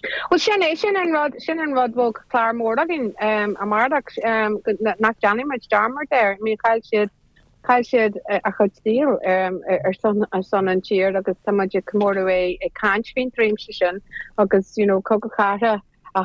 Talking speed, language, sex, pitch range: 120 wpm, English, female, 190-220 Hz